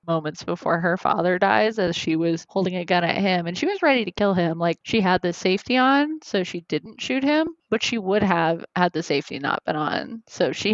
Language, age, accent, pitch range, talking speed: English, 20-39, American, 170-210 Hz, 240 wpm